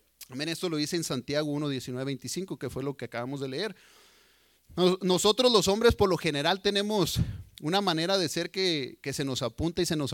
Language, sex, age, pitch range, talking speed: Spanish, male, 40-59, 130-175 Hz, 200 wpm